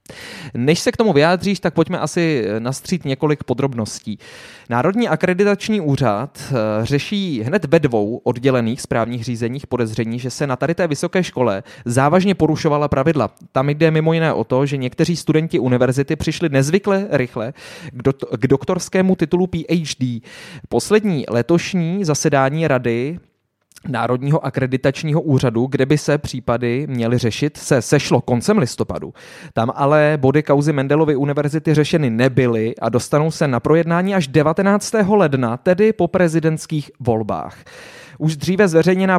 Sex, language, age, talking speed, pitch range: male, Czech, 20-39, 135 wpm, 130-170 Hz